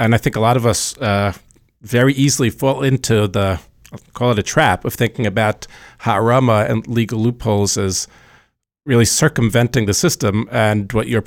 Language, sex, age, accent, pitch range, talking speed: English, male, 50-69, American, 105-130 Hz, 175 wpm